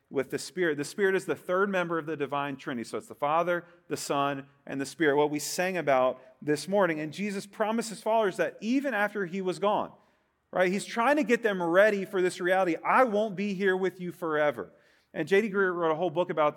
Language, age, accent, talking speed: English, 40-59, American, 230 wpm